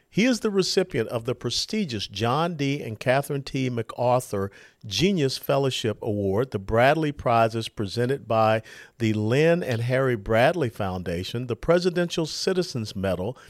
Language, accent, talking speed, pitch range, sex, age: English, American, 140 wpm, 110-150 Hz, male, 50-69